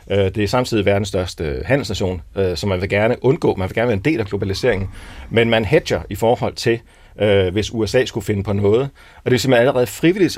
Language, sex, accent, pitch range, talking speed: Danish, male, native, 95-120 Hz, 215 wpm